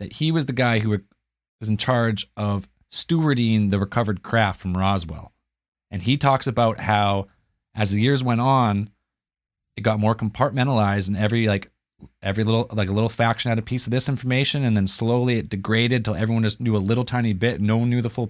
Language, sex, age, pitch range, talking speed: English, male, 30-49, 100-120 Hz, 205 wpm